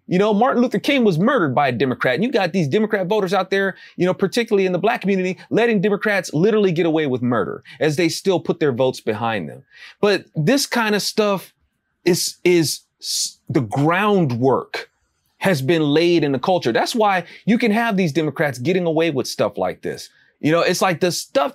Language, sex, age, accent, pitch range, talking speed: English, male, 30-49, American, 150-205 Hz, 205 wpm